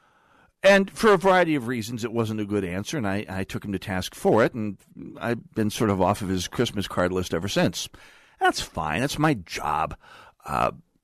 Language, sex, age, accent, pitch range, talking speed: English, male, 50-69, American, 95-130 Hz, 210 wpm